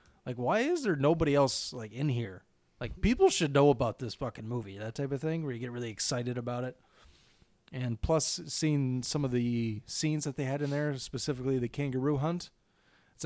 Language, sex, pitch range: English, male, 115-135 Hz